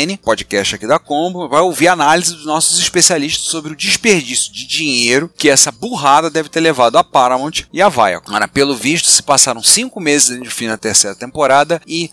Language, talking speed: Portuguese, 200 wpm